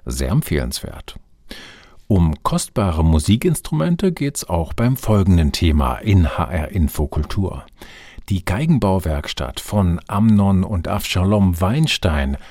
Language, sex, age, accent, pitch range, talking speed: German, male, 50-69, German, 85-110 Hz, 100 wpm